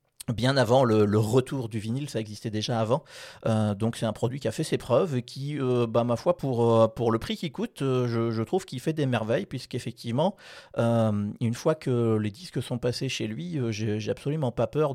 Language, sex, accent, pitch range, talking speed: French, male, French, 110-135 Hz, 225 wpm